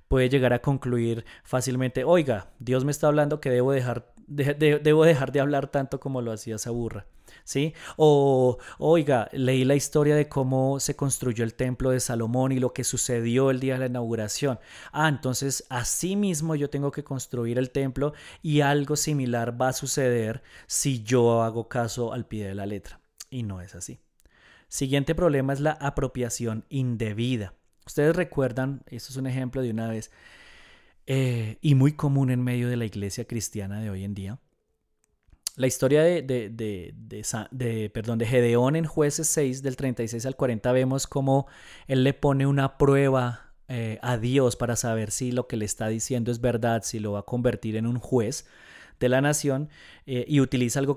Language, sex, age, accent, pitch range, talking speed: Spanish, male, 30-49, Colombian, 115-140 Hz, 180 wpm